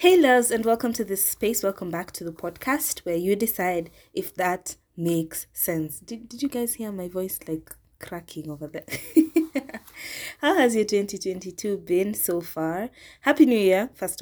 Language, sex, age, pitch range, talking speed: English, female, 20-39, 170-225 Hz, 175 wpm